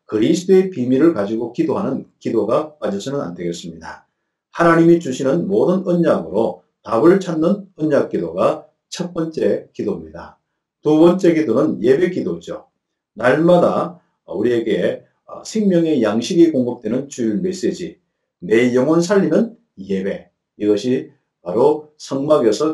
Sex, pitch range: male, 125-185 Hz